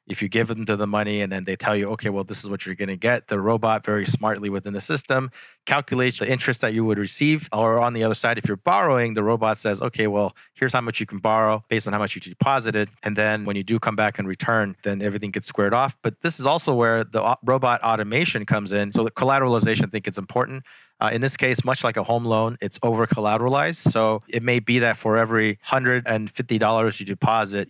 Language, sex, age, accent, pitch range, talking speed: English, male, 30-49, American, 105-120 Hz, 245 wpm